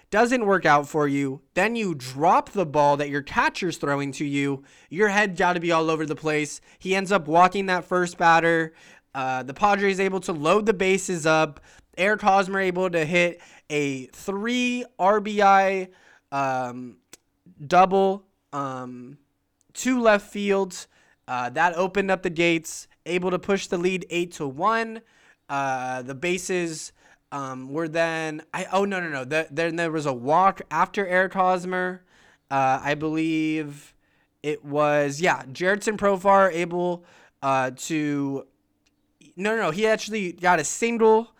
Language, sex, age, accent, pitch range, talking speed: English, male, 20-39, American, 145-195 Hz, 160 wpm